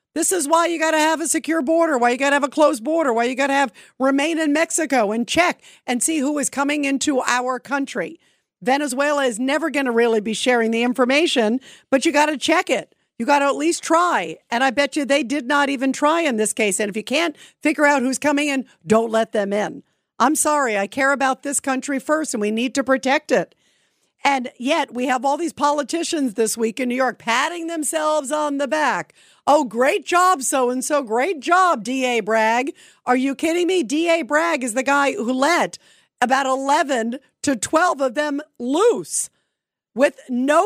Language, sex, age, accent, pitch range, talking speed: English, female, 50-69, American, 255-320 Hz, 210 wpm